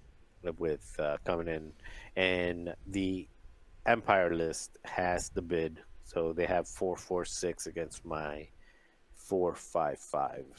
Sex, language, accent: male, English, American